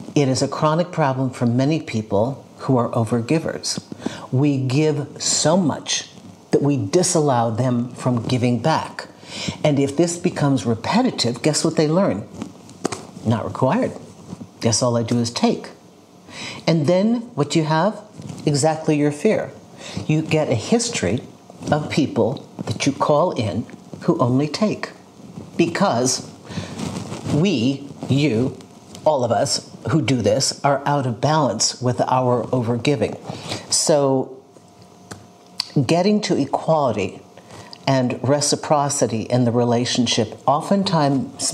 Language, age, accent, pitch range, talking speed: English, 50-69, American, 125-155 Hz, 125 wpm